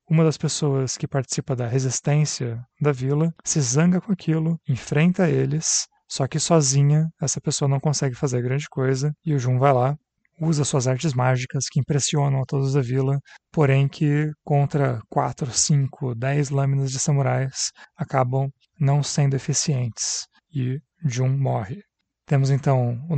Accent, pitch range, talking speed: Brazilian, 130-150 Hz, 155 wpm